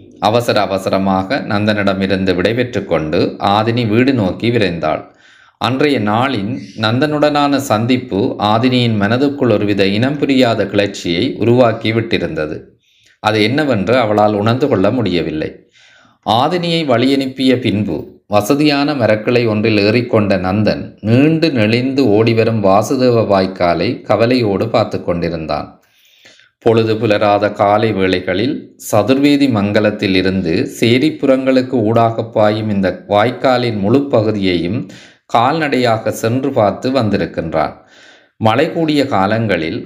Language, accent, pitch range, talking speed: Tamil, native, 100-130 Hz, 95 wpm